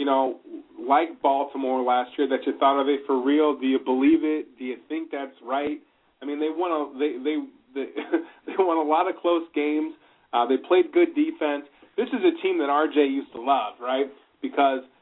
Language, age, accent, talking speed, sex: English, 30-49, American, 190 wpm, male